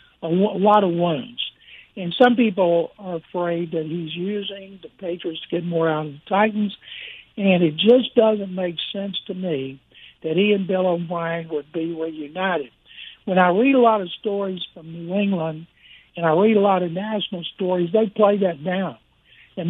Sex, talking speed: male, 190 wpm